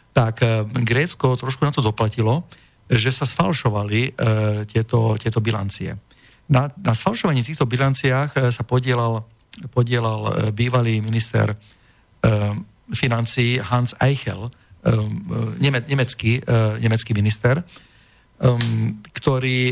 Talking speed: 105 wpm